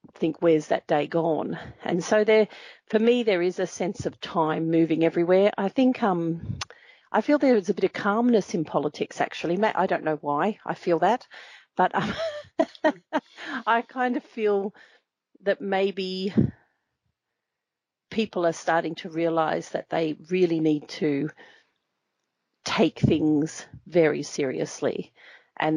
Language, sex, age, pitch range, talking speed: English, female, 40-59, 160-215 Hz, 140 wpm